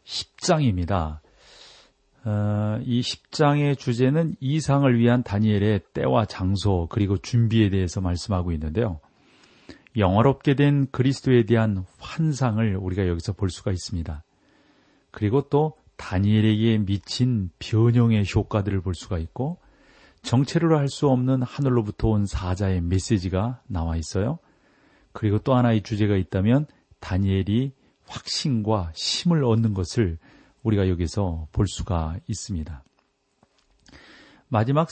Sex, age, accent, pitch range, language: male, 40-59, native, 95-125 Hz, Korean